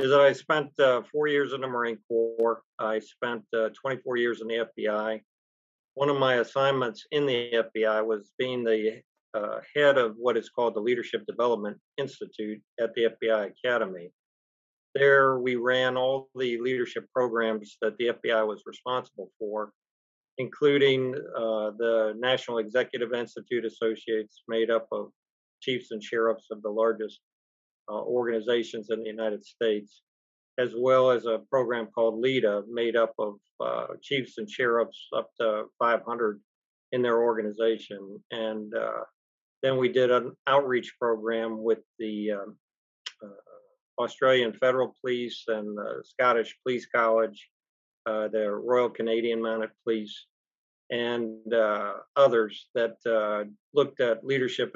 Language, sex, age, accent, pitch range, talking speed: English, male, 50-69, American, 110-125 Hz, 145 wpm